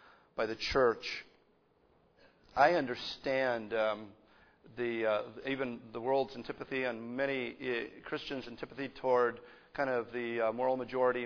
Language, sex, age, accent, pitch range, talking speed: English, male, 40-59, American, 110-135 Hz, 130 wpm